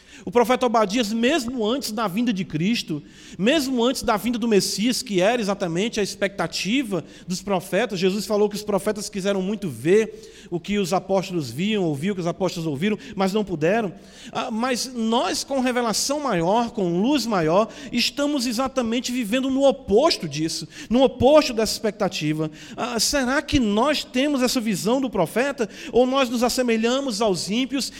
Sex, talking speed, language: male, 165 wpm, Portuguese